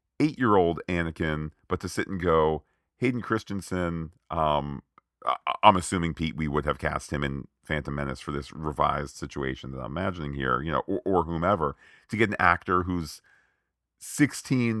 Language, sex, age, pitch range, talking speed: English, male, 40-59, 80-110 Hz, 160 wpm